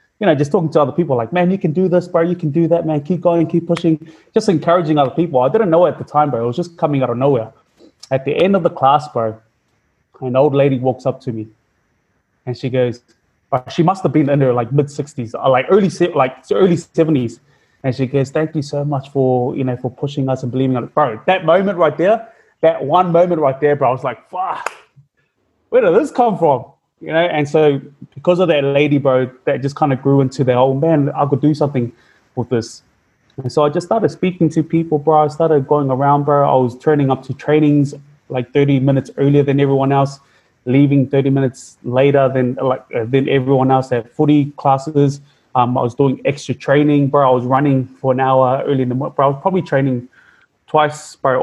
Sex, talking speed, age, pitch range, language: male, 230 wpm, 20-39, 130-155 Hz, English